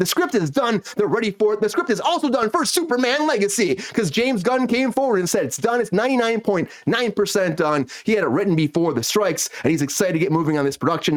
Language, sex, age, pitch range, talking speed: English, male, 30-49, 160-235 Hz, 235 wpm